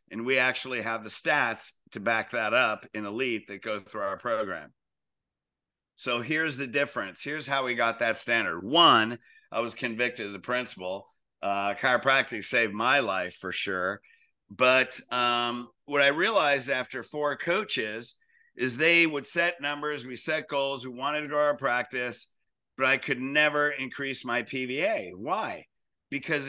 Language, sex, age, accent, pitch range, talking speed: English, male, 50-69, American, 125-155 Hz, 165 wpm